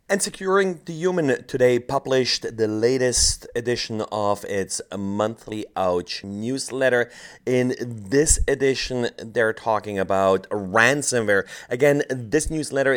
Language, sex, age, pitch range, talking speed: English, male, 30-49, 110-135 Hz, 110 wpm